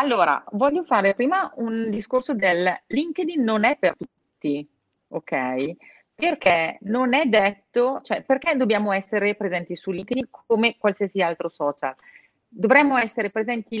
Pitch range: 175-235 Hz